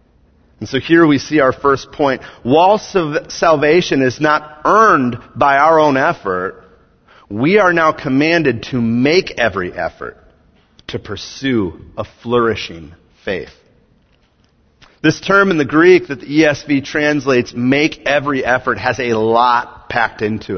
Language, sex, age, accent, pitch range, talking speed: English, male, 40-59, American, 120-160 Hz, 135 wpm